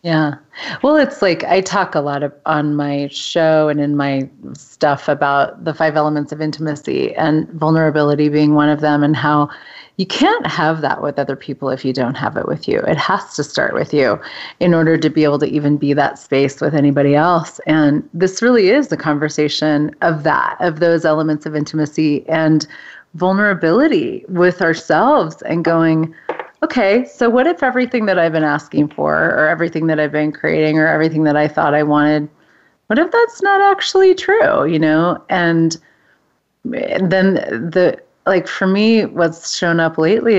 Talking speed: 185 wpm